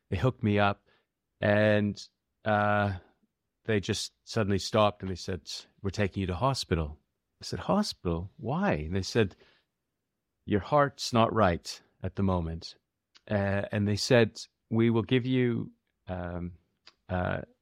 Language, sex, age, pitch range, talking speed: English, male, 40-59, 95-110 Hz, 145 wpm